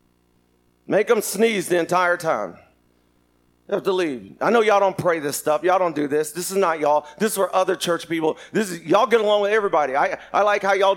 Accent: American